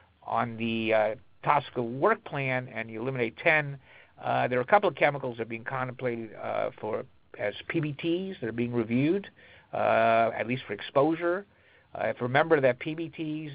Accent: American